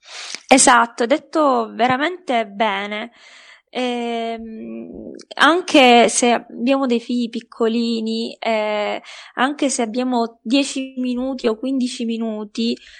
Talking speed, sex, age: 95 wpm, female, 20-39